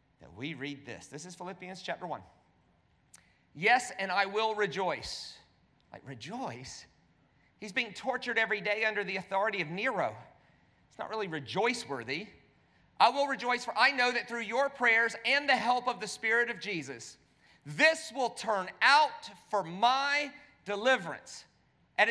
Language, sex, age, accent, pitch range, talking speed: English, male, 40-59, American, 145-225 Hz, 150 wpm